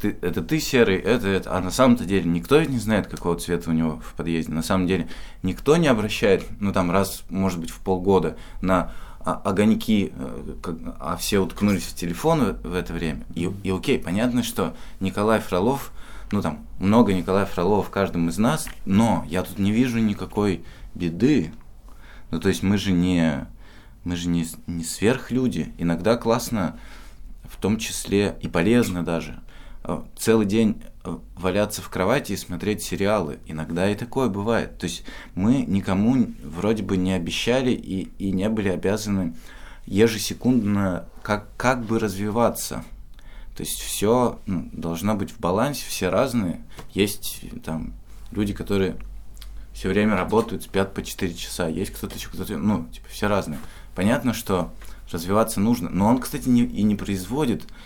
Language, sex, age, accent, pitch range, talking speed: Russian, male, 20-39, native, 90-110 Hz, 160 wpm